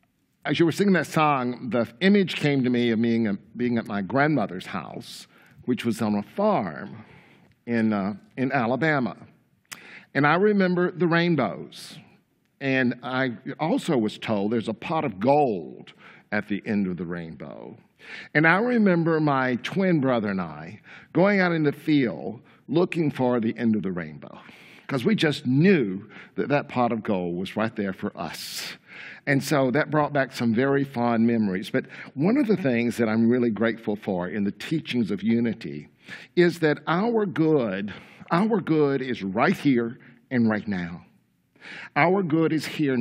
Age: 50-69